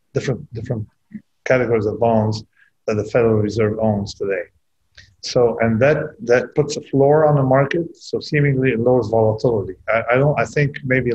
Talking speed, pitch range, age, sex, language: 170 wpm, 110-145 Hz, 50-69, male, Romanian